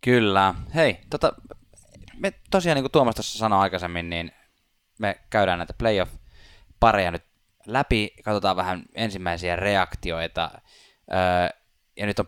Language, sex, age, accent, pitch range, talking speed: Finnish, male, 20-39, native, 90-110 Hz, 120 wpm